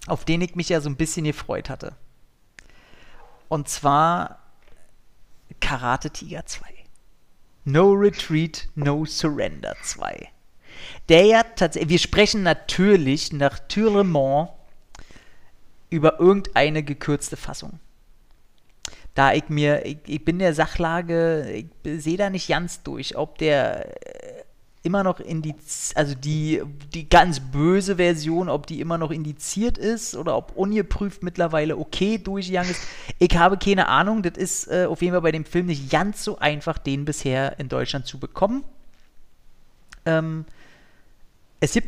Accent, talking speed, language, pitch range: German, 140 wpm, German, 150-185 Hz